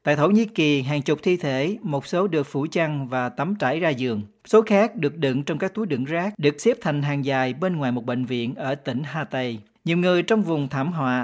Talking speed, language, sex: 250 wpm, Vietnamese, male